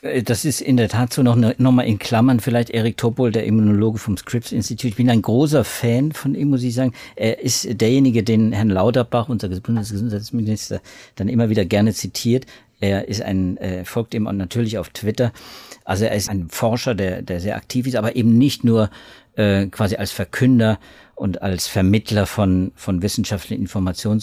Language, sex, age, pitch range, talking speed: German, male, 50-69, 100-125 Hz, 180 wpm